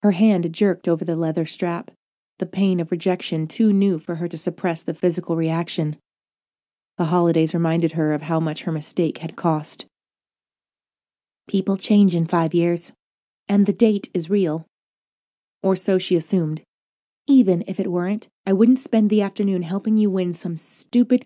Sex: female